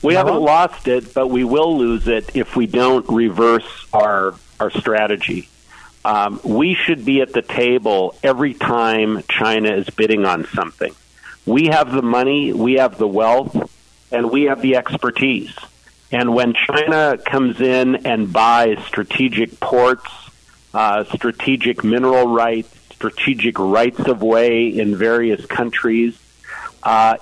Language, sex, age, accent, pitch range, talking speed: English, male, 50-69, American, 110-130 Hz, 140 wpm